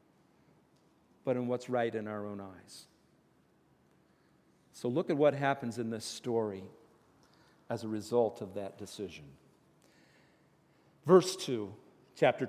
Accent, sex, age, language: American, male, 50-69, English